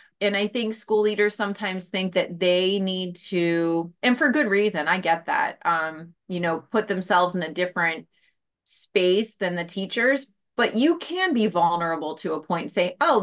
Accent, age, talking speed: American, 30-49, 180 wpm